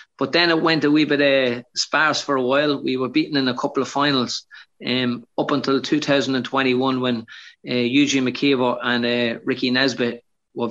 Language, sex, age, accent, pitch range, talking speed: English, male, 30-49, Irish, 125-145 Hz, 200 wpm